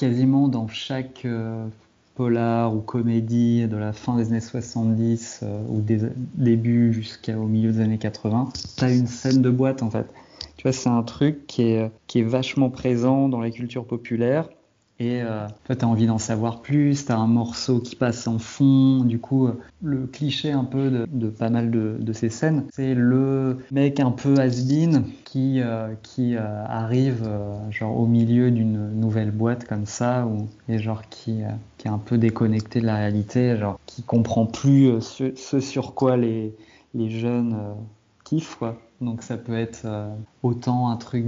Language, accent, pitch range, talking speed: French, French, 110-125 Hz, 185 wpm